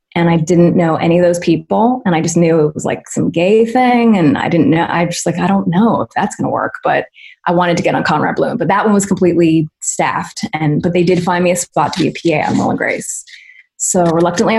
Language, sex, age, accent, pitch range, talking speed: English, female, 20-39, American, 170-200 Hz, 270 wpm